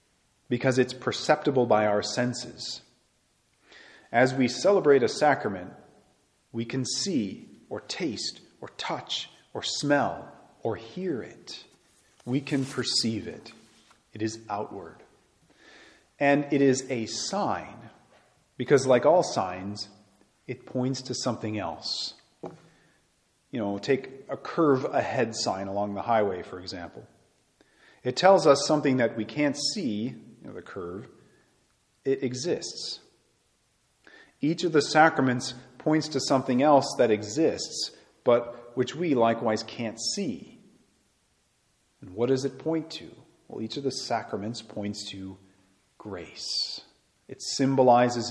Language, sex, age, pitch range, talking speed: English, male, 40-59, 110-140 Hz, 125 wpm